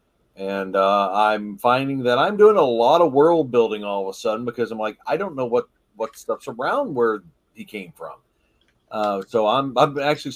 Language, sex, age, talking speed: English, male, 40-59, 205 wpm